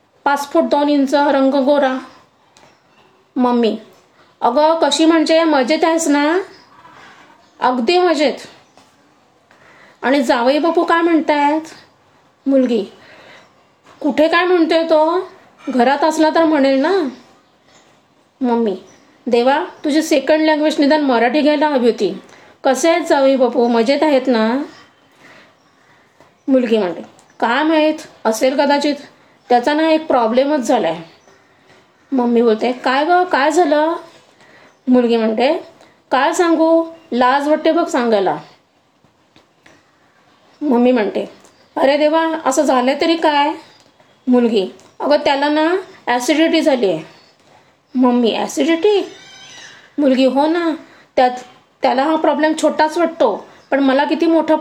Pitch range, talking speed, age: 255-320 Hz, 100 wpm, 20-39